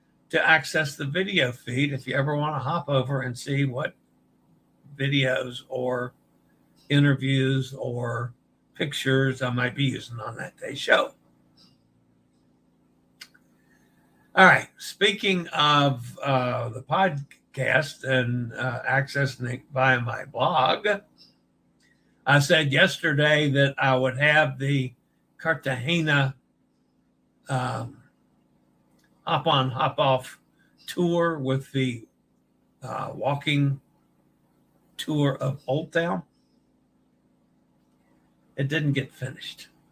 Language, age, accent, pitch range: English, 60-79, American, 125-145 Hz